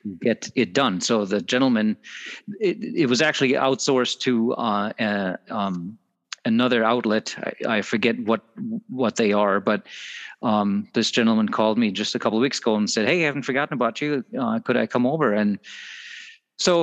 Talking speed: 180 wpm